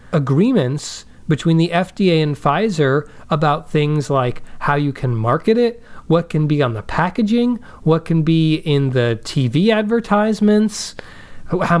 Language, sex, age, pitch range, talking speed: English, male, 30-49, 130-175 Hz, 140 wpm